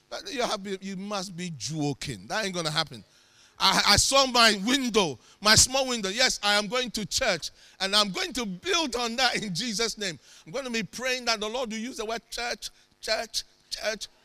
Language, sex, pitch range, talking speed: English, male, 180-250 Hz, 220 wpm